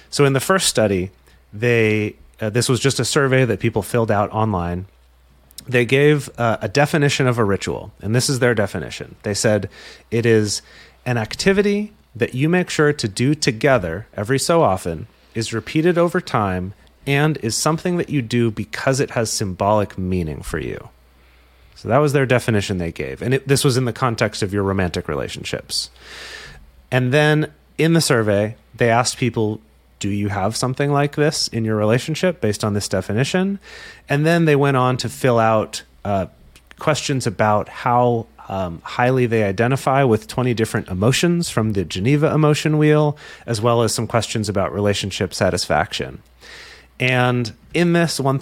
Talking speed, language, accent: 170 wpm, English, American